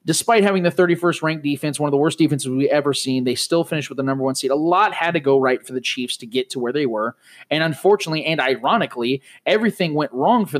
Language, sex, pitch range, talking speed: English, male, 130-170 Hz, 250 wpm